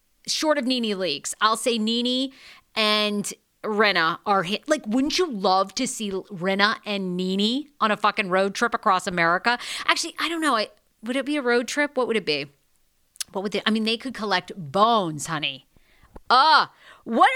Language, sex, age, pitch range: English, female, 40-59, 185-260 Hz